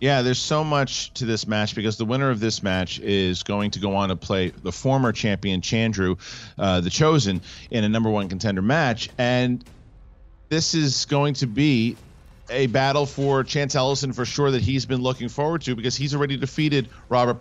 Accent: American